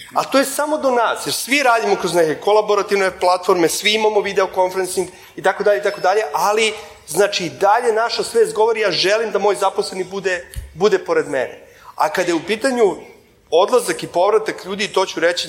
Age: 30-49